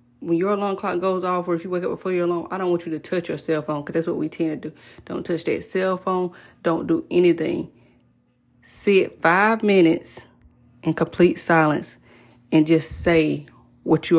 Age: 30-49